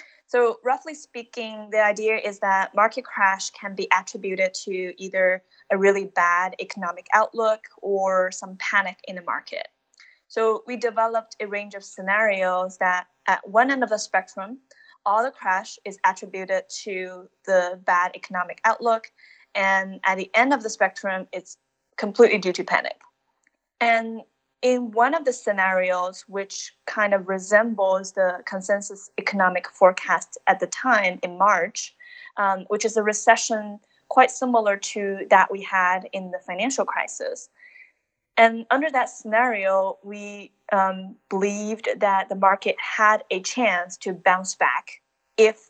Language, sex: English, female